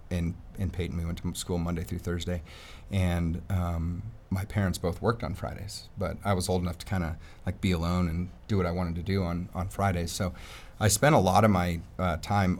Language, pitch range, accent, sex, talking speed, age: English, 85-100 Hz, American, male, 225 wpm, 30-49